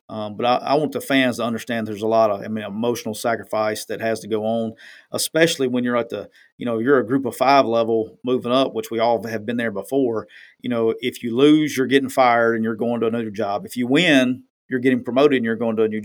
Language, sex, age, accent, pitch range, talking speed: English, male, 40-59, American, 110-130 Hz, 260 wpm